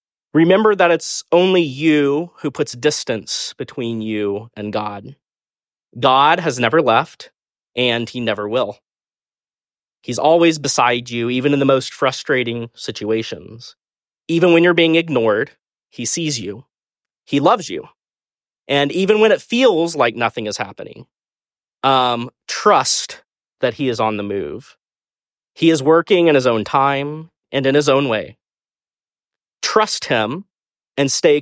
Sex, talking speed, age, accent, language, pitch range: male, 140 wpm, 30-49, American, English, 120-160 Hz